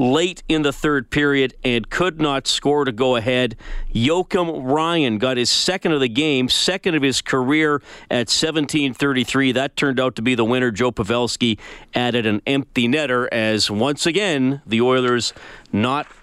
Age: 40-59